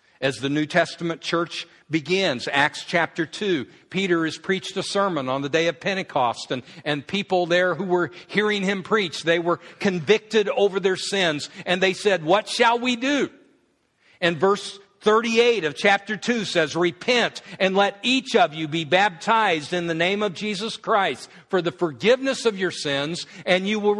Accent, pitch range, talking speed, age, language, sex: American, 165-200 Hz, 180 wpm, 50-69, English, male